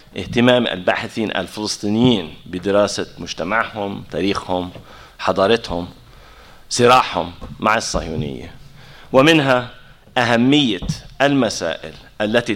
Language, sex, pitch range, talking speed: English, male, 100-130 Hz, 65 wpm